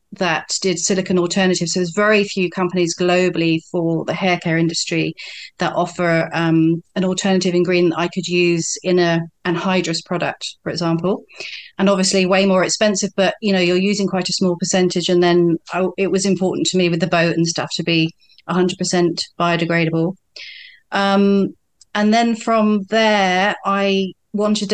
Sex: female